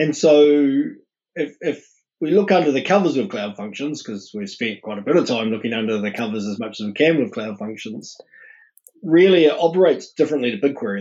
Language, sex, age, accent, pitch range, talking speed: English, male, 20-39, Australian, 110-145 Hz, 205 wpm